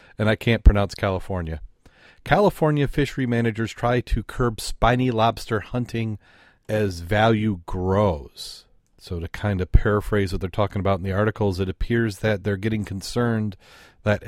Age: 40-59